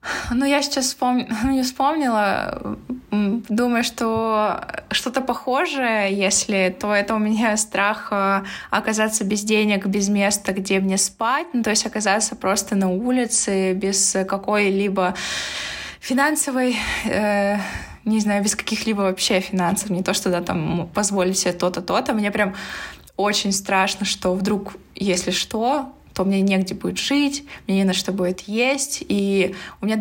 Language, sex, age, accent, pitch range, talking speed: Russian, female, 20-39, native, 190-230 Hz, 145 wpm